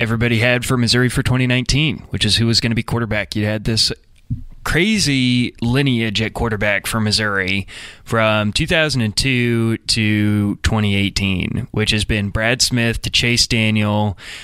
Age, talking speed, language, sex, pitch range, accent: 20-39, 145 wpm, English, male, 105-120 Hz, American